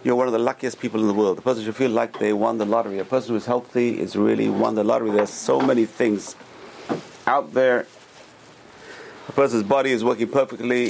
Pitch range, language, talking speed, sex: 105-130 Hz, English, 230 wpm, male